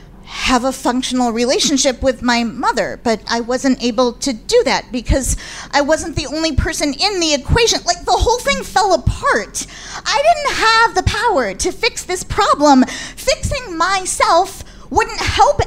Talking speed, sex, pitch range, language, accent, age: 160 wpm, female, 230-340 Hz, English, American, 40-59